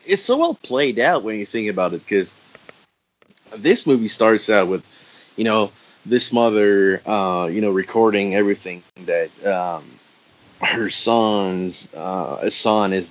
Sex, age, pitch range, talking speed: male, 30-49, 100-150 Hz, 145 wpm